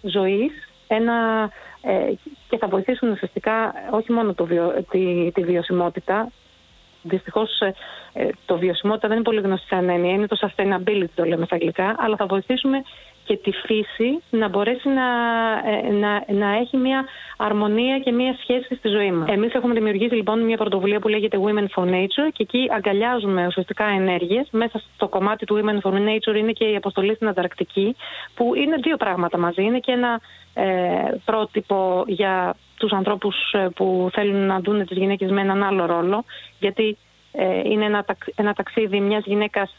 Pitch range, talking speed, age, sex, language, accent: 195-230 Hz, 165 wpm, 30-49, female, Greek, native